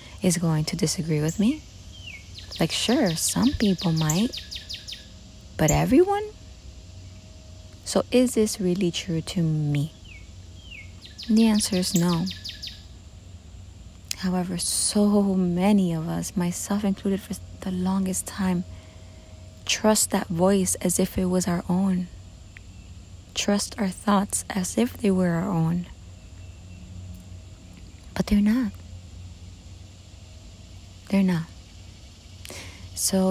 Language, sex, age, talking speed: English, female, 30-49, 110 wpm